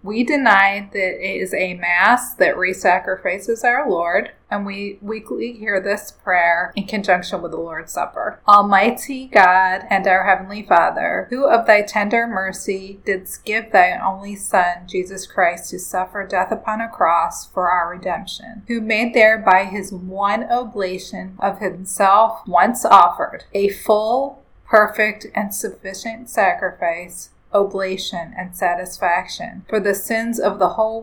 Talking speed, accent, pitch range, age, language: 145 wpm, American, 190-220 Hz, 30-49, English